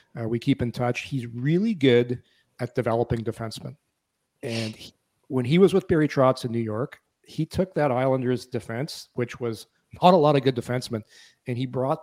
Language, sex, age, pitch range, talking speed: English, male, 40-59, 120-140 Hz, 185 wpm